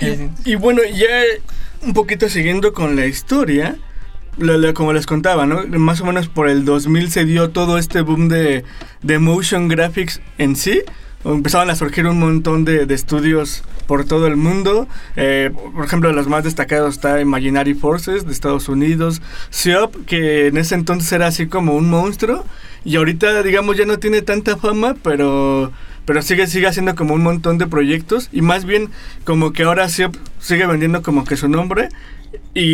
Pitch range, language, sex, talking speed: 150-180 Hz, Spanish, male, 180 wpm